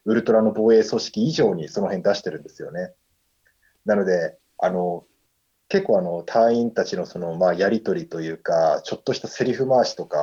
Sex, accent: male, native